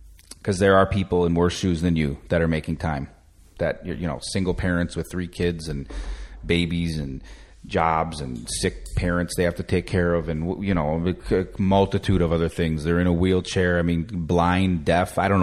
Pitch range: 85-110 Hz